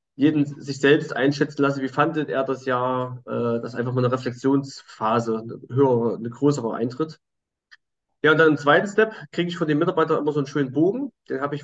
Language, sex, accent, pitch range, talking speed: German, male, German, 130-160 Hz, 200 wpm